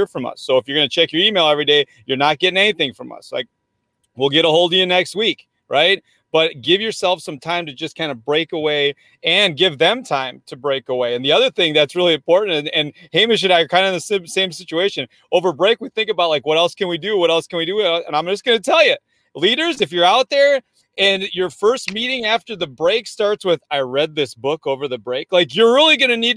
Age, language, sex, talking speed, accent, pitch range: 30-49, English, male, 260 wpm, American, 150-205 Hz